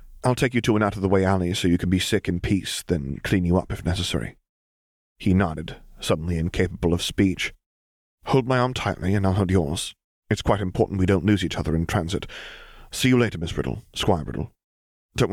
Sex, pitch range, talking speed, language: male, 85-100 Hz, 205 wpm, English